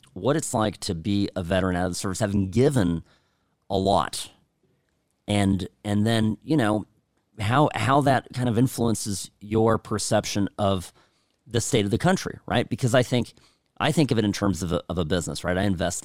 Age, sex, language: 40-59, male, English